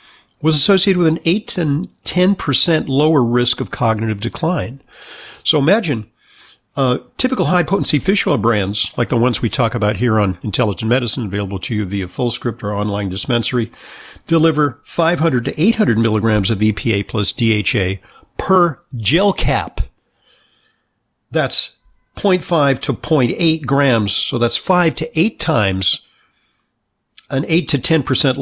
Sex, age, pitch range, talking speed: male, 50-69, 110-155 Hz, 135 wpm